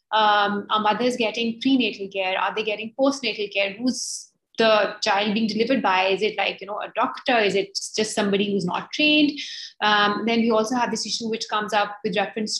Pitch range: 205-250 Hz